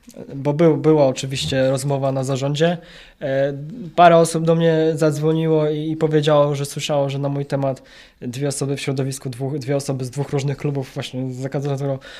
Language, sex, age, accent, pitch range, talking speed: Polish, male, 20-39, native, 140-175 Hz, 175 wpm